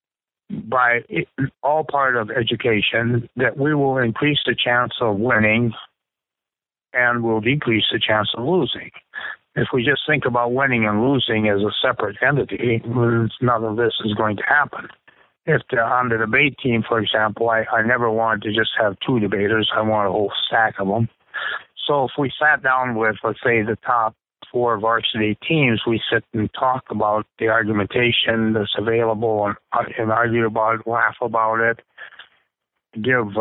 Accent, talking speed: American, 165 wpm